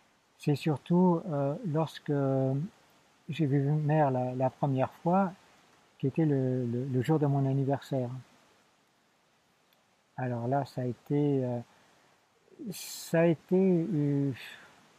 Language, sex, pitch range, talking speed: French, male, 140-175 Hz, 125 wpm